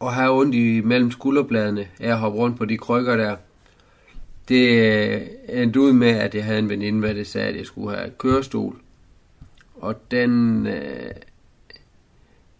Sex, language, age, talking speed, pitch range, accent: male, Danish, 30-49, 155 wpm, 105-130 Hz, native